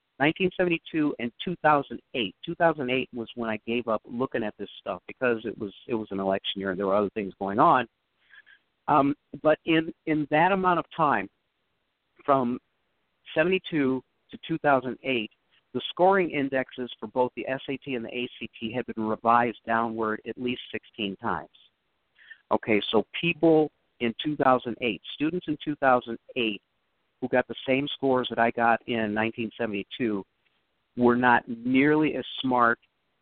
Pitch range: 115-145 Hz